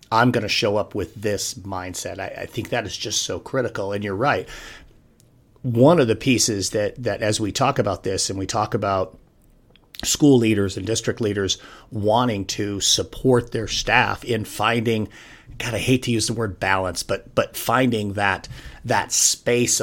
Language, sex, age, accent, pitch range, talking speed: English, male, 40-59, American, 100-120 Hz, 180 wpm